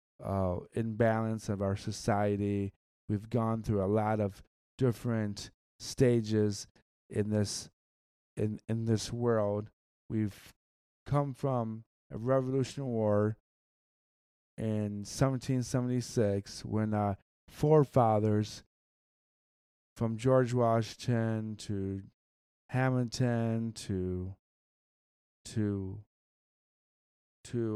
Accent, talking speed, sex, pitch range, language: American, 80 wpm, male, 100-120 Hz, English